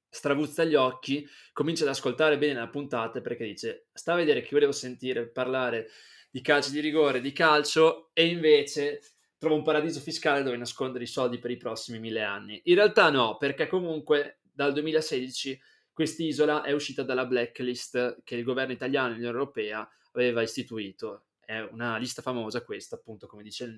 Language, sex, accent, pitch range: Italian, male, native, 120-155 Hz